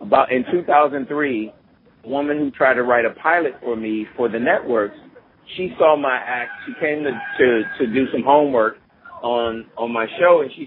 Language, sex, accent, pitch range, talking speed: English, male, American, 120-150 Hz, 190 wpm